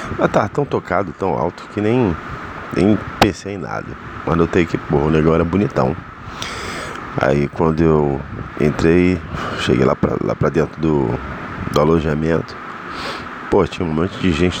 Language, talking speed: Portuguese, 150 wpm